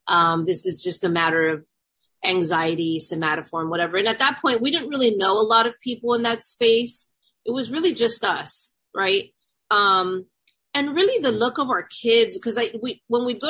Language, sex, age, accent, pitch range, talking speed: English, female, 30-49, American, 200-280 Hz, 200 wpm